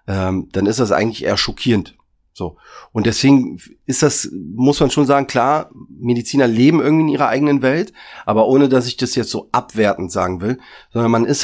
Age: 40-59